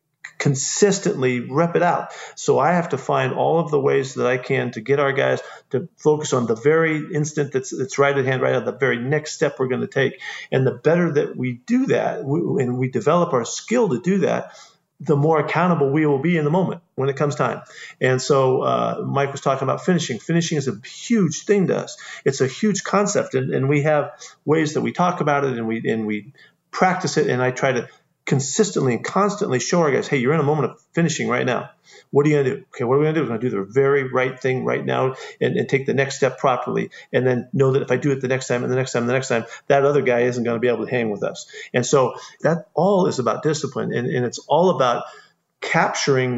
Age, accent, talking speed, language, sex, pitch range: 40-59, American, 255 wpm, English, male, 130-160 Hz